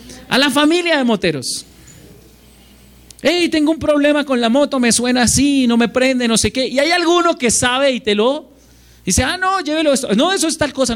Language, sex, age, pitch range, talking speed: Spanish, male, 40-59, 190-280 Hz, 215 wpm